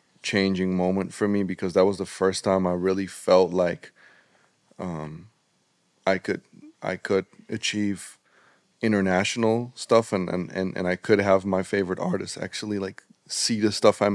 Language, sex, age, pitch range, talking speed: English, male, 20-39, 90-100 Hz, 155 wpm